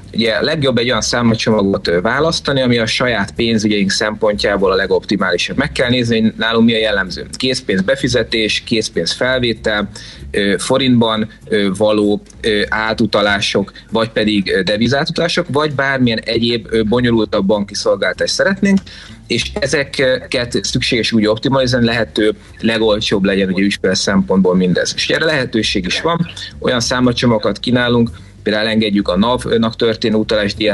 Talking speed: 125 wpm